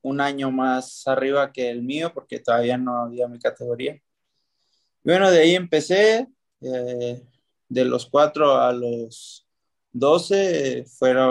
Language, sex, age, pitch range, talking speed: Spanish, male, 20-39, 120-140 Hz, 140 wpm